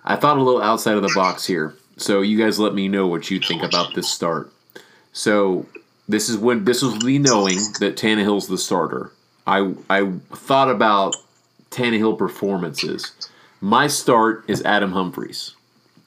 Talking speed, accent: 165 wpm, American